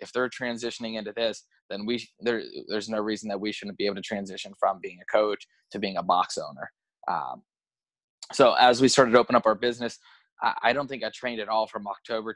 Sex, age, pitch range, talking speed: male, 20-39, 105-120 Hz, 230 wpm